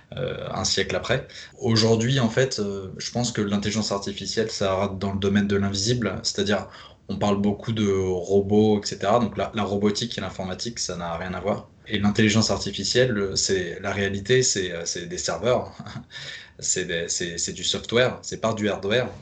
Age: 20-39